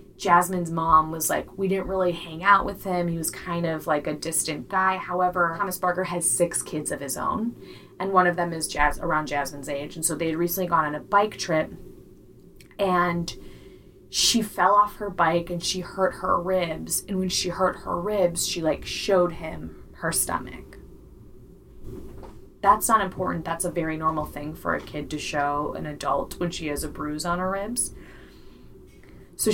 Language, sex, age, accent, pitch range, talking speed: English, female, 20-39, American, 160-185 Hz, 190 wpm